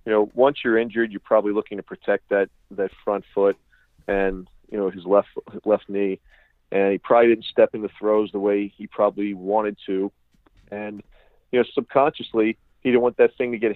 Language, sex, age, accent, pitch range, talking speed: English, male, 40-59, American, 105-130 Hz, 200 wpm